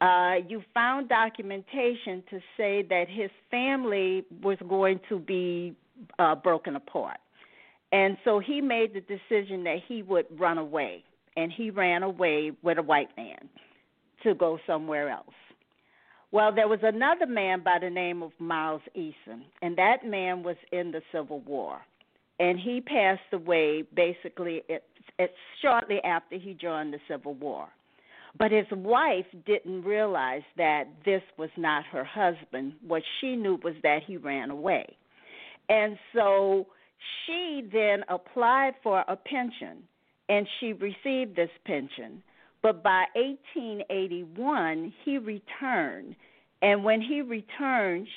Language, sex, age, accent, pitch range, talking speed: English, female, 50-69, American, 170-220 Hz, 140 wpm